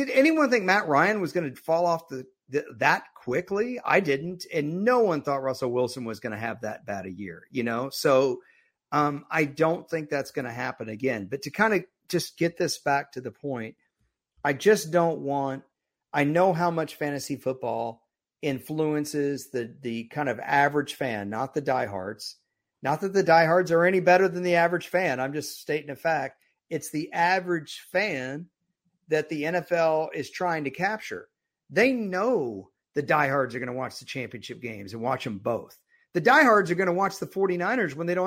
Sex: male